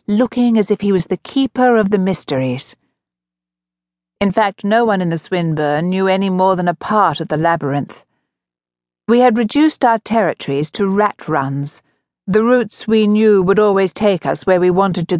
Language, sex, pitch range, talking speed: English, female, 140-220 Hz, 180 wpm